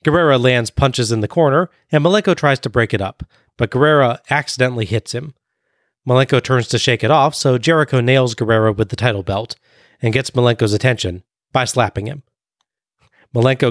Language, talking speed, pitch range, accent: English, 175 wpm, 110-135 Hz, American